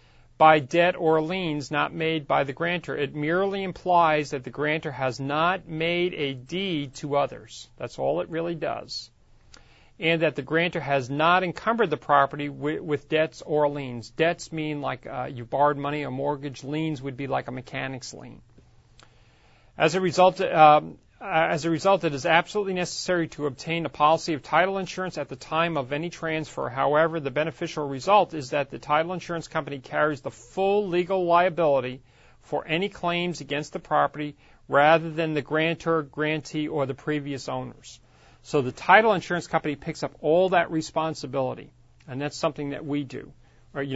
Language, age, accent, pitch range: English, 40-59, American, 140-165 Hz